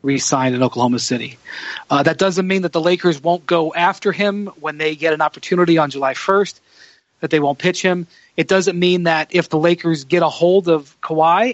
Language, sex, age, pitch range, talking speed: English, male, 40-59, 140-180 Hz, 210 wpm